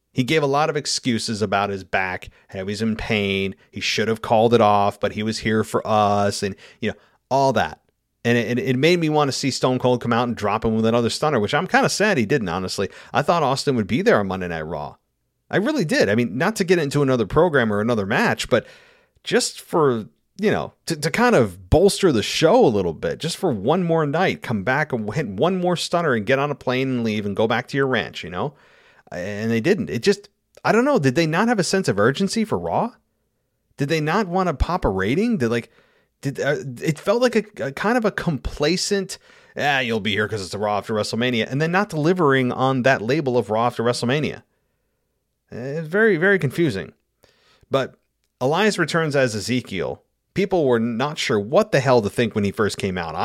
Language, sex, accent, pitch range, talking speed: English, male, American, 110-165 Hz, 230 wpm